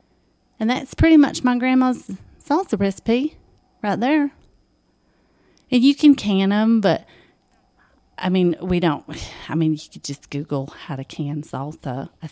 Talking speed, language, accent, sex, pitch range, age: 150 wpm, English, American, female, 160-225 Hz, 30-49